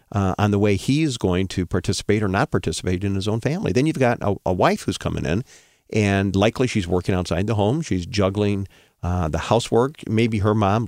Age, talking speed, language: 50-69, 220 wpm, English